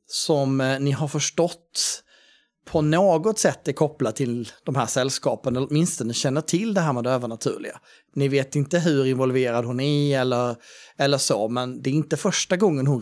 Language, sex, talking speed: Swedish, male, 185 wpm